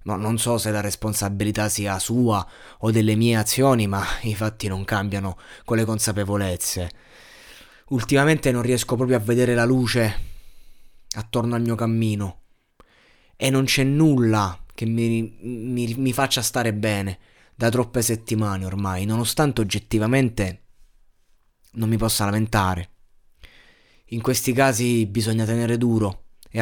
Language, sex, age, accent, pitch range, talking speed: Italian, male, 20-39, native, 105-125 Hz, 135 wpm